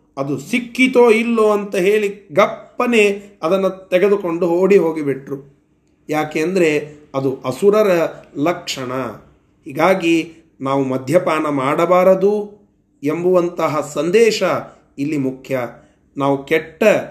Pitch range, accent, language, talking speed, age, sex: 140-185 Hz, native, Kannada, 90 wpm, 30-49, male